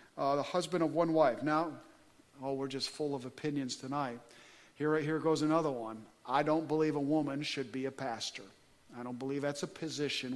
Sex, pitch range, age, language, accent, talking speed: male, 135-175 Hz, 50-69, English, American, 205 wpm